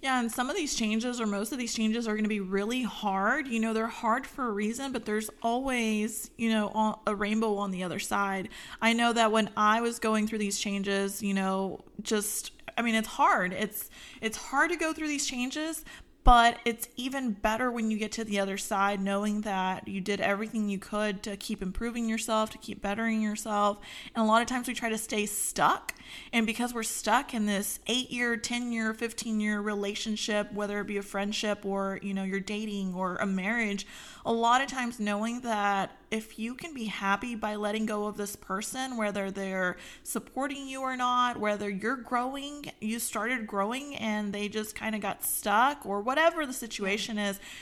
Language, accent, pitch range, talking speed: English, American, 205-240 Hz, 205 wpm